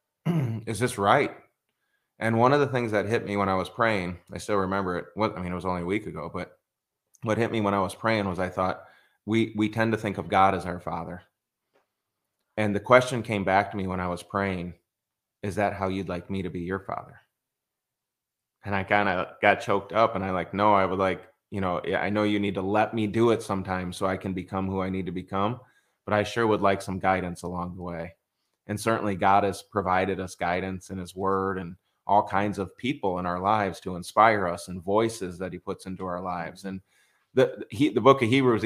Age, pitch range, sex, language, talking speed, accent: 20-39, 95-110 Hz, male, English, 235 wpm, American